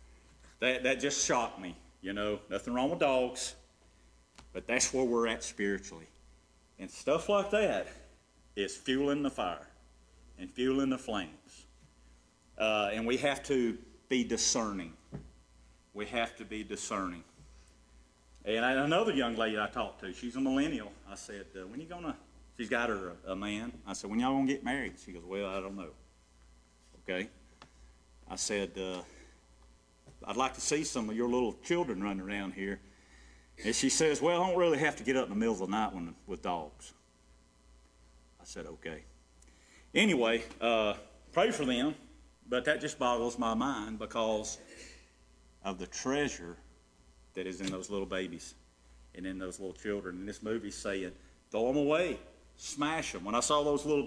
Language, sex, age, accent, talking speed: English, male, 40-59, American, 170 wpm